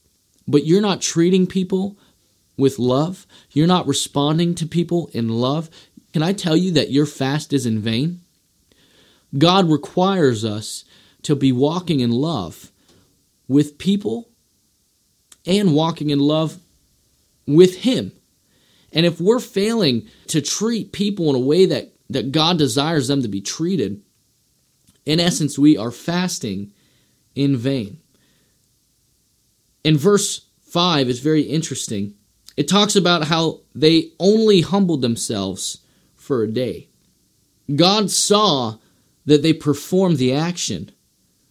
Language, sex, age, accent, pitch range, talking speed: English, male, 30-49, American, 130-175 Hz, 130 wpm